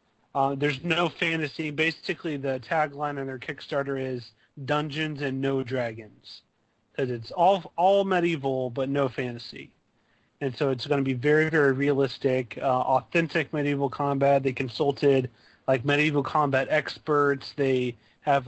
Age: 30-49